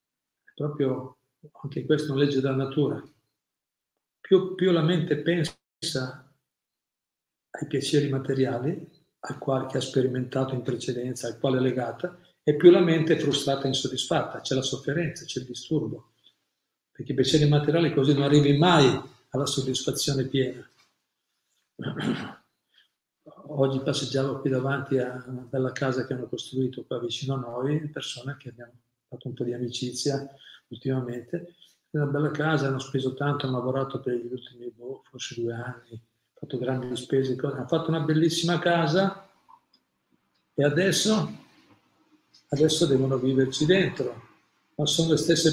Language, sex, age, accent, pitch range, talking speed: Italian, male, 50-69, native, 130-150 Hz, 145 wpm